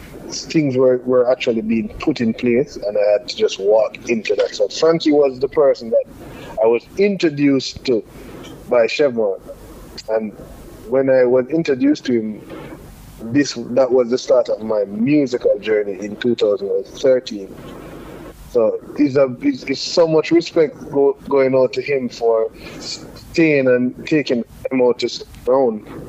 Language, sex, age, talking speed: English, male, 30-49, 145 wpm